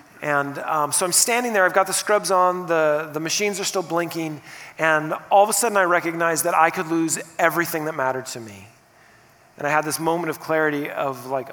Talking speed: 220 wpm